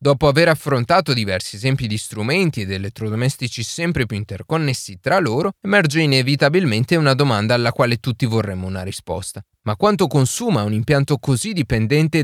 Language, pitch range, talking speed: Italian, 110-155 Hz, 150 wpm